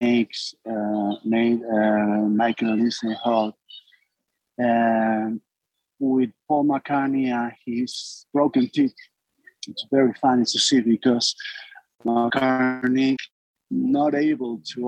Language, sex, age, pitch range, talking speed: English, male, 50-69, 110-135 Hz, 95 wpm